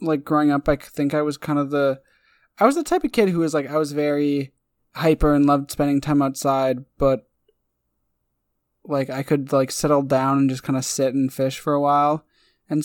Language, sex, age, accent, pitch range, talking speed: English, male, 20-39, American, 125-150 Hz, 215 wpm